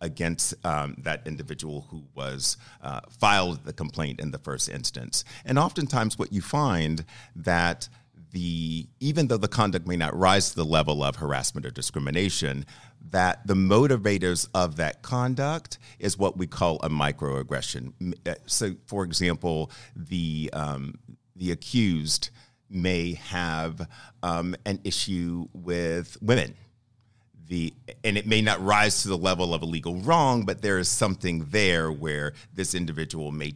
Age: 50-69